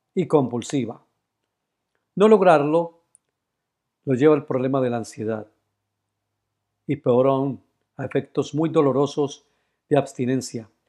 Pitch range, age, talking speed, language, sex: 130-165 Hz, 50-69, 110 wpm, Spanish, male